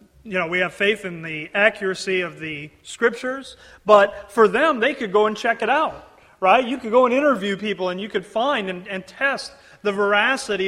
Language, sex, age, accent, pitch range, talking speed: English, male, 30-49, American, 180-220 Hz, 210 wpm